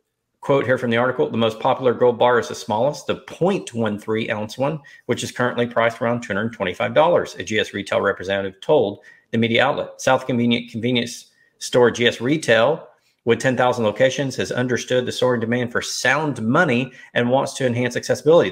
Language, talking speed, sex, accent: English, 170 wpm, male, American